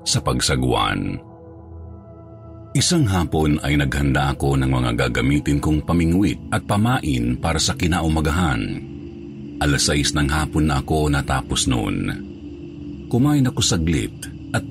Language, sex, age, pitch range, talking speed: Filipino, male, 50-69, 70-90 Hz, 115 wpm